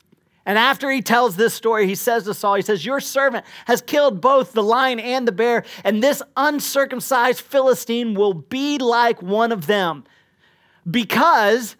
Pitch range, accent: 195-250 Hz, American